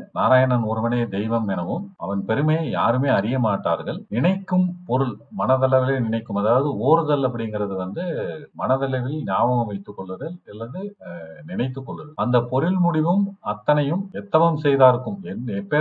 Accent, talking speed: native, 50 wpm